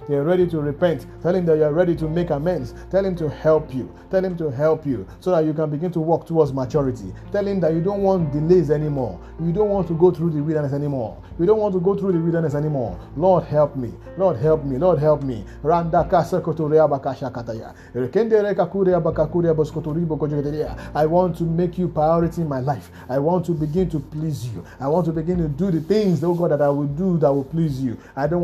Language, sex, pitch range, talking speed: English, male, 145-180 Hz, 215 wpm